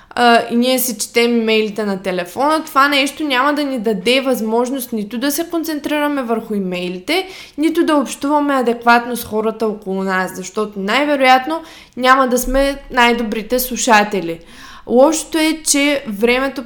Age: 20-39